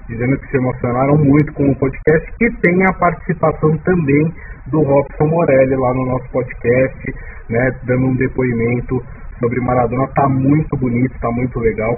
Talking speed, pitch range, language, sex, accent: 160 wpm, 110-140 Hz, Portuguese, male, Brazilian